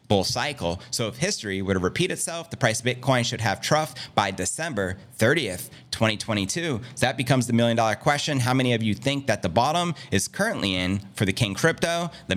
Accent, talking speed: American, 210 wpm